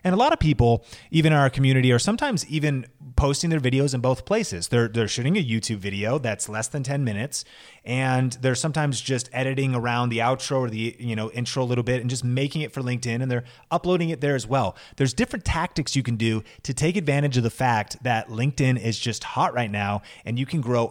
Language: English